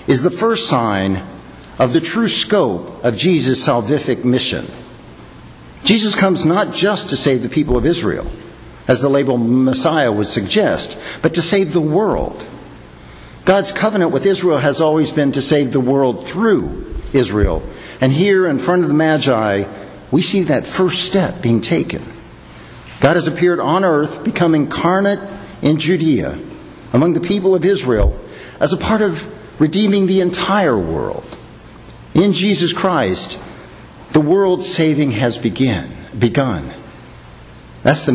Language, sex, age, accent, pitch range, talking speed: English, male, 50-69, American, 115-180 Hz, 145 wpm